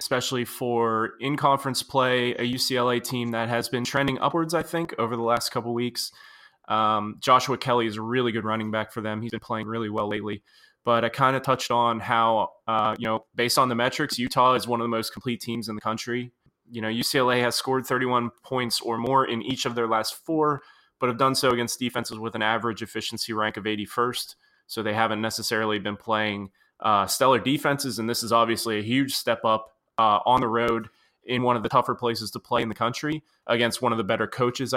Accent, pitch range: American, 110-125 Hz